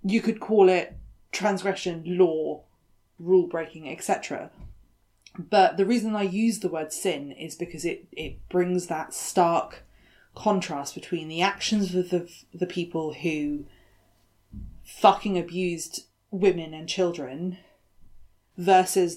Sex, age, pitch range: female, 20-39, 145-190 Hz